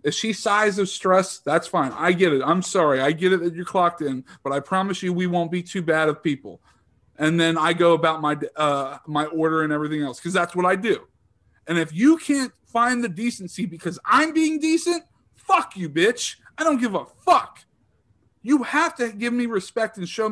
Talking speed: 215 wpm